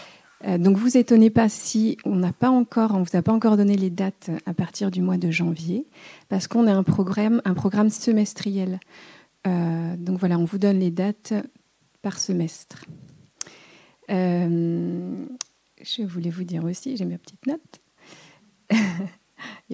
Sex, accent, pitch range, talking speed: female, French, 180-210 Hz, 155 wpm